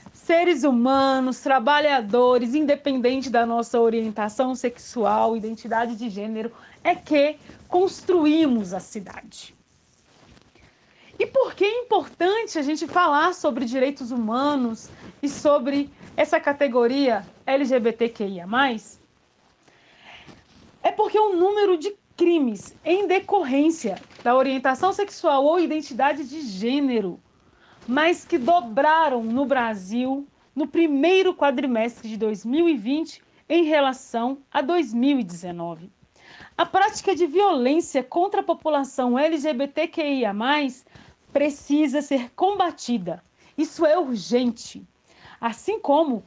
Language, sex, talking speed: Portuguese, female, 100 wpm